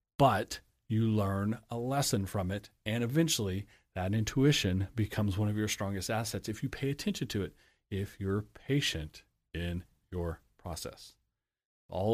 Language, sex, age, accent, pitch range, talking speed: English, male, 40-59, American, 95-125 Hz, 150 wpm